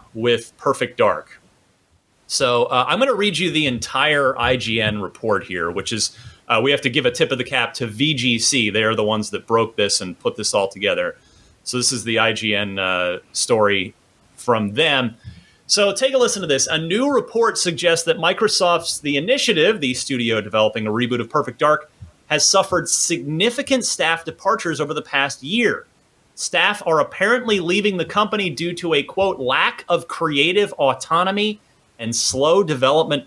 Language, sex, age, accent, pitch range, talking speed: English, male, 30-49, American, 125-195 Hz, 175 wpm